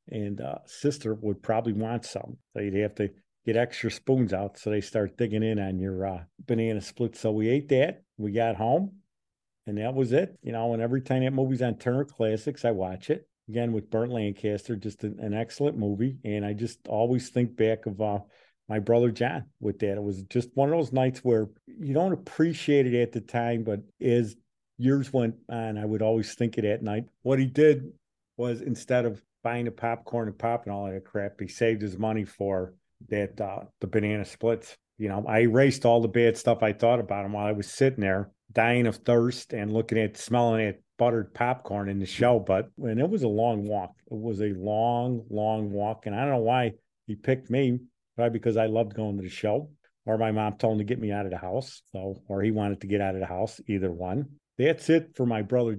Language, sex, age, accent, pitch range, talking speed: English, male, 50-69, American, 105-120 Hz, 225 wpm